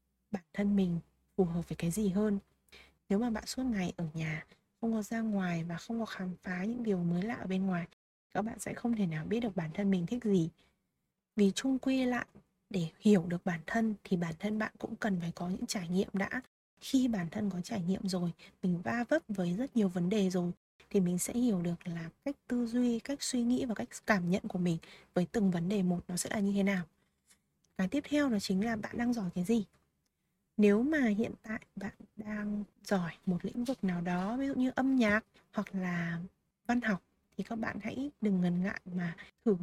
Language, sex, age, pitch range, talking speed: Vietnamese, female, 20-39, 185-230 Hz, 230 wpm